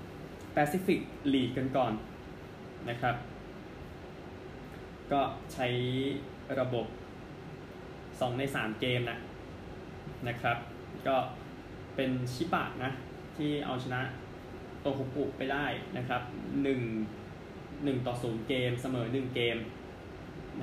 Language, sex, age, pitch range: Thai, male, 20-39, 120-140 Hz